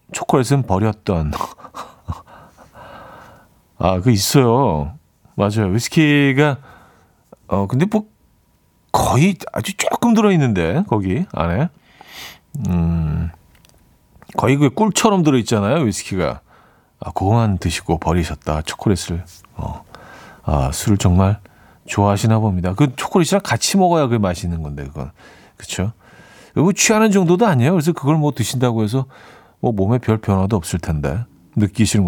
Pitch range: 95-145 Hz